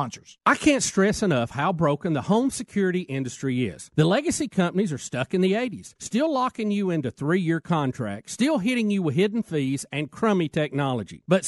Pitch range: 150-230 Hz